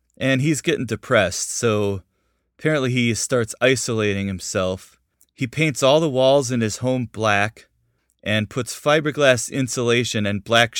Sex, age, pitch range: male, 30-49, 95-115 Hz